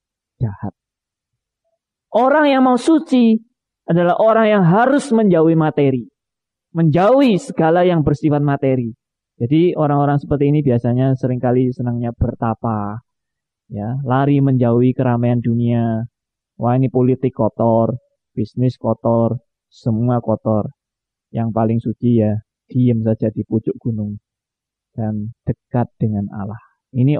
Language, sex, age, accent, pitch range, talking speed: Indonesian, male, 20-39, native, 115-165 Hz, 115 wpm